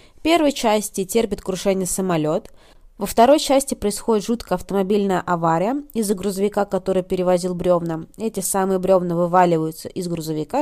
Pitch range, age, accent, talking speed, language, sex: 180-250 Hz, 20-39, native, 135 wpm, Russian, female